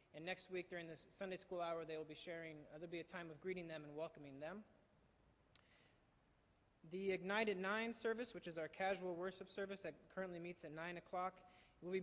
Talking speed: 210 wpm